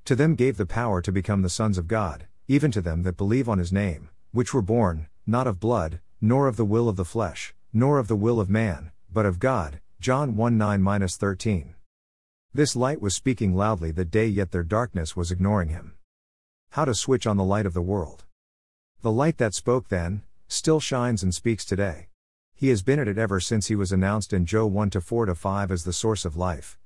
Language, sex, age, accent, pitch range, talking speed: English, male, 50-69, American, 90-115 Hz, 210 wpm